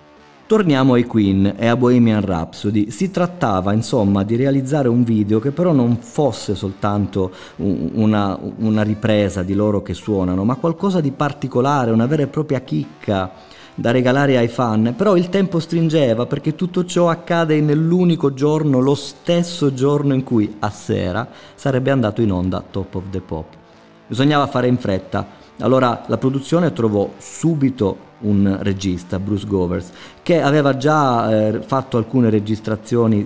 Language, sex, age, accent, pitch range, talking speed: Italian, male, 30-49, native, 105-150 Hz, 150 wpm